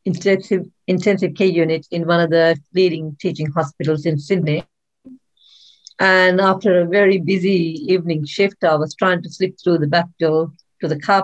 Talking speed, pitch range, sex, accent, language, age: 170 wpm, 165-190 Hz, female, Indian, English, 50-69